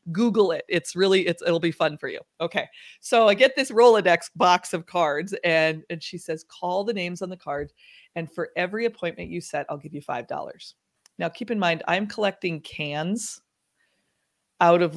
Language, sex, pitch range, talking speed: English, female, 160-205 Hz, 195 wpm